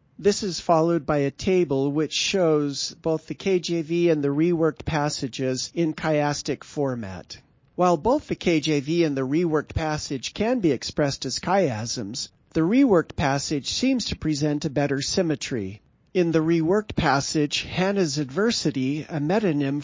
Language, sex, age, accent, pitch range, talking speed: English, male, 40-59, American, 140-175 Hz, 145 wpm